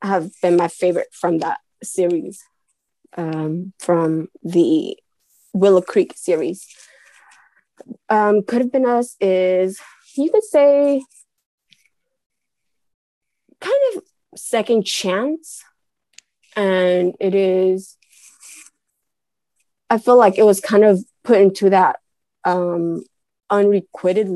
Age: 20-39